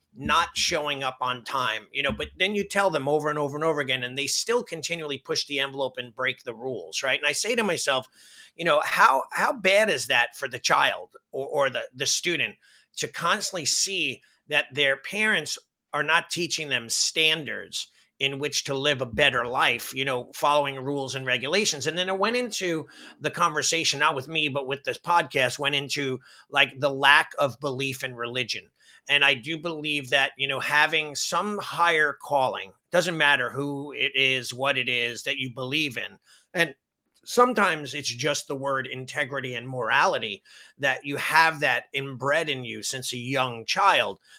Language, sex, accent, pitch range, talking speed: English, male, American, 135-165 Hz, 190 wpm